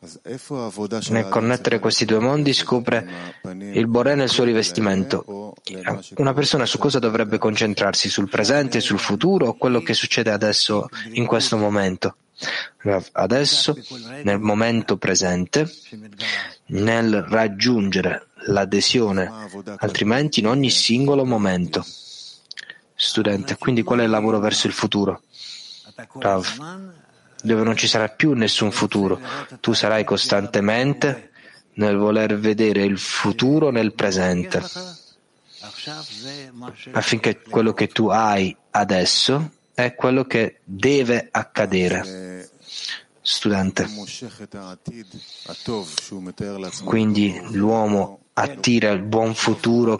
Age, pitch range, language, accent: 20-39, 100-125 Hz, Italian, native